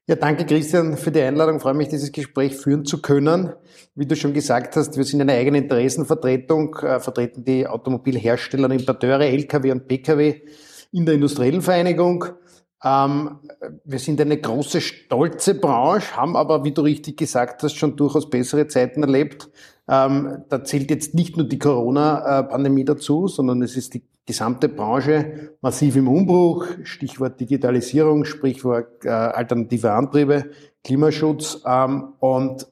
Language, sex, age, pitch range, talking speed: German, male, 50-69, 130-150 Hz, 150 wpm